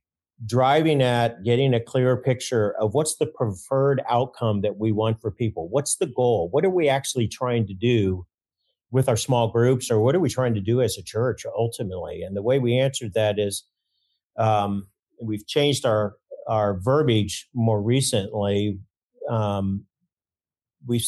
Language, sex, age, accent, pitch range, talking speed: English, male, 50-69, American, 105-125 Hz, 165 wpm